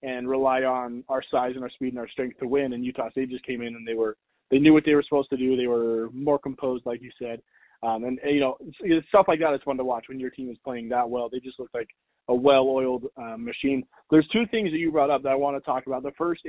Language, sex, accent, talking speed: English, male, American, 290 wpm